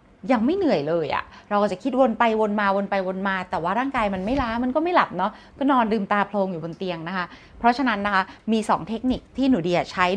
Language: Thai